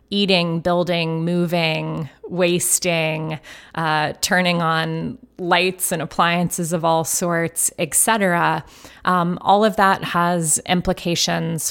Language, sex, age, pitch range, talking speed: English, female, 20-39, 165-190 Hz, 110 wpm